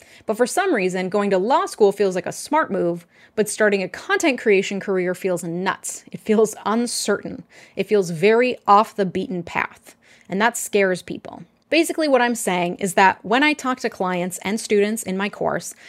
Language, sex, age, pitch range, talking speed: English, female, 20-39, 190-245 Hz, 195 wpm